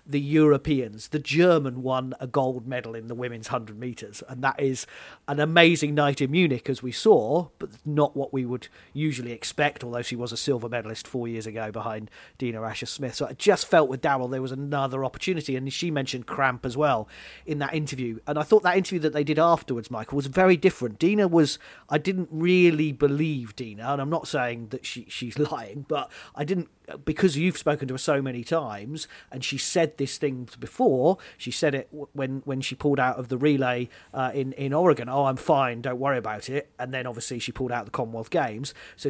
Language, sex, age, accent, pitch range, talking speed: English, male, 40-59, British, 125-150 Hz, 210 wpm